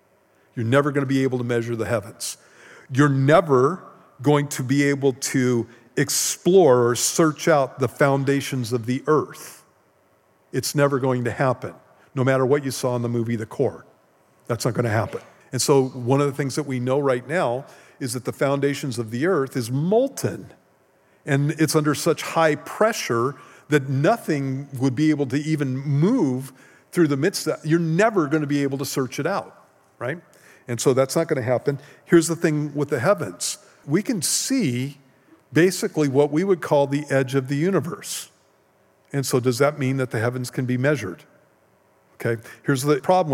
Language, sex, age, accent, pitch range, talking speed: English, male, 50-69, American, 125-155 Hz, 185 wpm